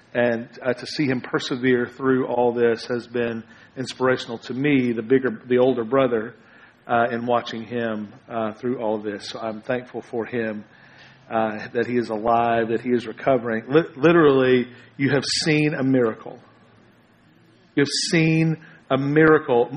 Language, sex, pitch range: English, male, 120-155 Hz